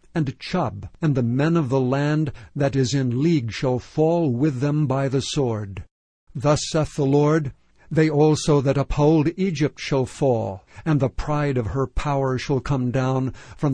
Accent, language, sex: American, English, male